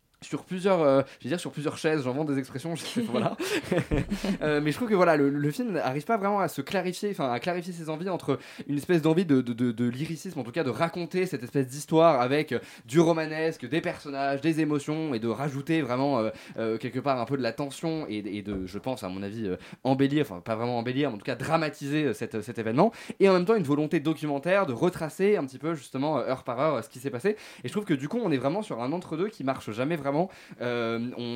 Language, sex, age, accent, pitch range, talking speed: French, male, 20-39, French, 130-170 Hz, 265 wpm